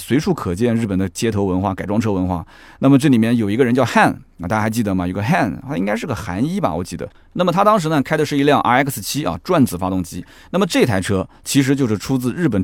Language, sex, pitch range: Chinese, male, 95-135 Hz